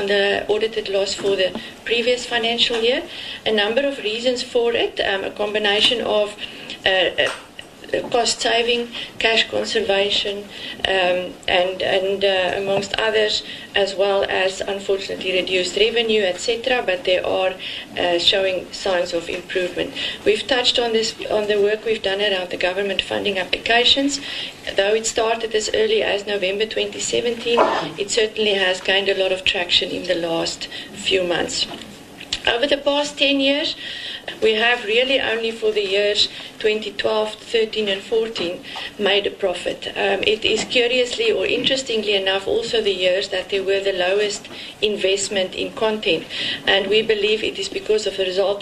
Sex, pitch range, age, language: female, 190-255 Hz, 40-59, English